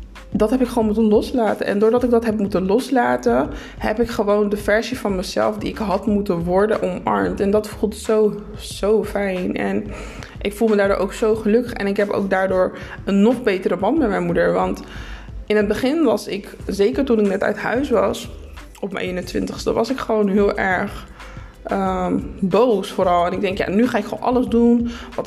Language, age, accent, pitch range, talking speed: Dutch, 20-39, Dutch, 195-235 Hz, 205 wpm